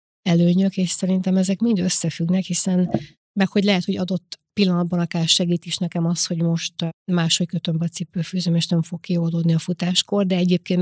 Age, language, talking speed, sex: 30-49, Hungarian, 175 wpm, female